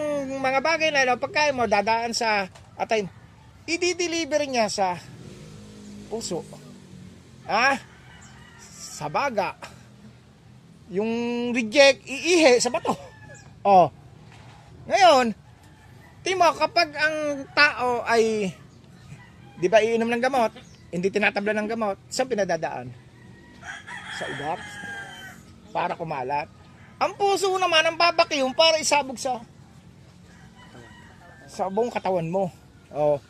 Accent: Filipino